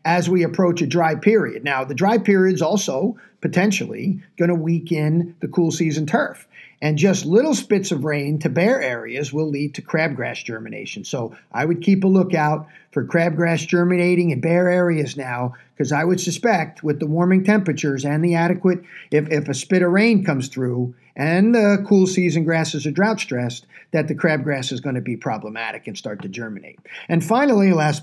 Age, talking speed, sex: 50-69, 190 wpm, male